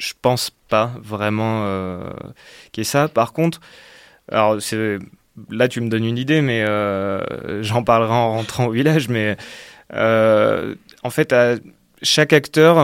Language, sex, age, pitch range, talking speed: French, male, 20-39, 110-125 Hz, 155 wpm